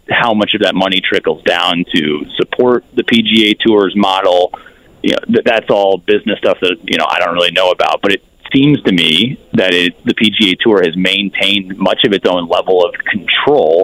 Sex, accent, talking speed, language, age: male, American, 200 wpm, English, 30-49